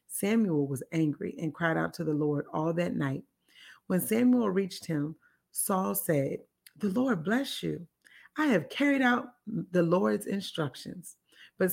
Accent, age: American, 30-49